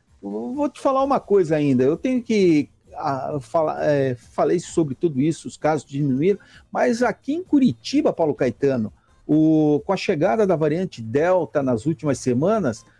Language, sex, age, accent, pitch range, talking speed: Portuguese, male, 60-79, Brazilian, 130-205 Hz, 155 wpm